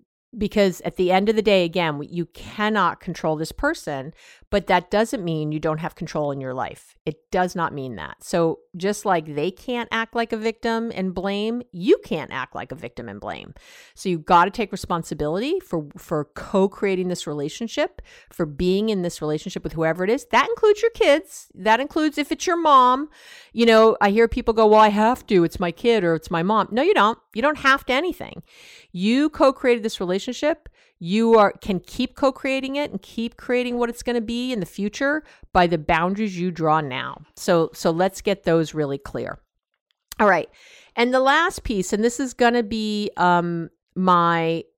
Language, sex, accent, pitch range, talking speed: English, female, American, 170-235 Hz, 205 wpm